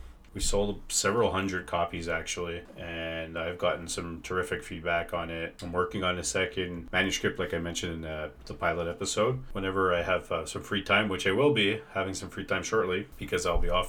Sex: male